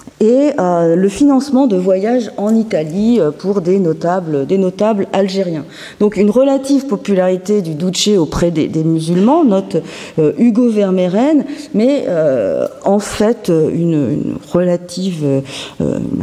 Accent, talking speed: French, 130 wpm